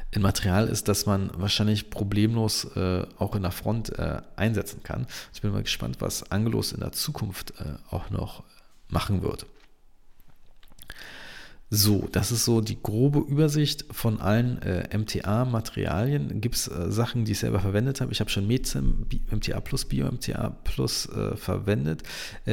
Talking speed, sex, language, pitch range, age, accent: 165 wpm, male, German, 100-115 Hz, 40-59, German